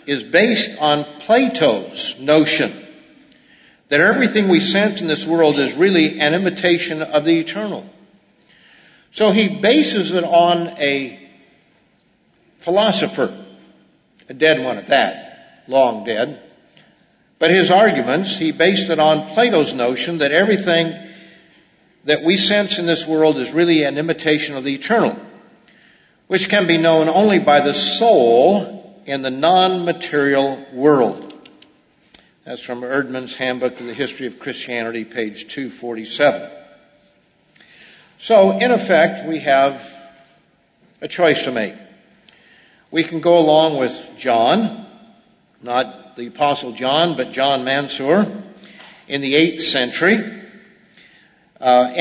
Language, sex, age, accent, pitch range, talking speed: English, male, 50-69, American, 135-180 Hz, 125 wpm